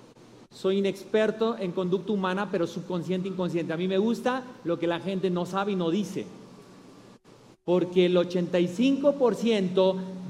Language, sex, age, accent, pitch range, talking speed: Spanish, male, 40-59, Mexican, 180-230 Hz, 140 wpm